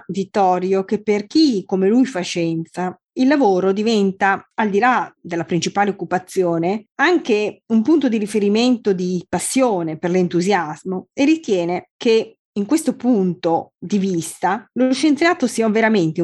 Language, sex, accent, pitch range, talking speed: Italian, female, native, 180-235 Hz, 140 wpm